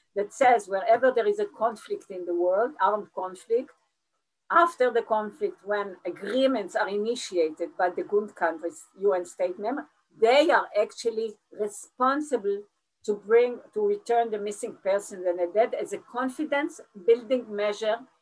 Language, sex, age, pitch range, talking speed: English, female, 50-69, 205-260 Hz, 145 wpm